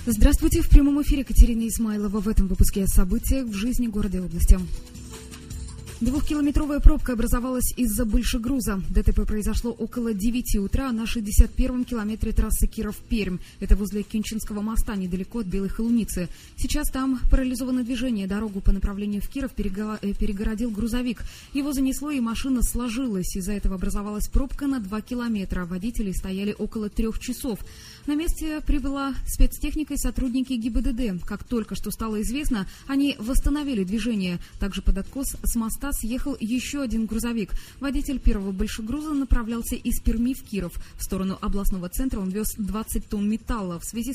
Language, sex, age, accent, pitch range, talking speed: Russian, female, 20-39, native, 200-255 Hz, 150 wpm